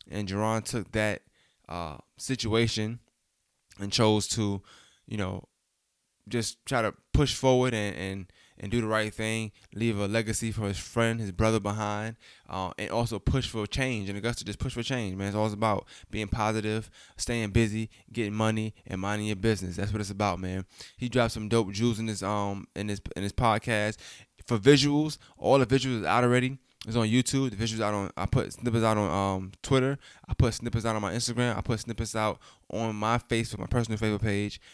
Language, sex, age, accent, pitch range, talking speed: English, male, 10-29, American, 100-115 Hz, 200 wpm